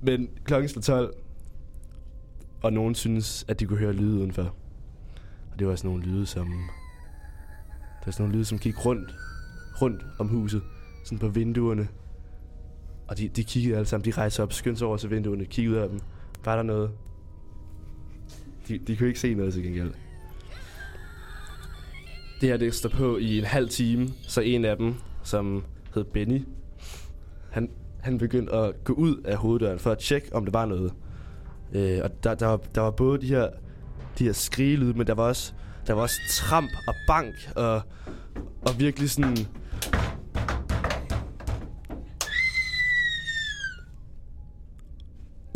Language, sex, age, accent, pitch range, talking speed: Danish, male, 20-39, native, 80-115 Hz, 160 wpm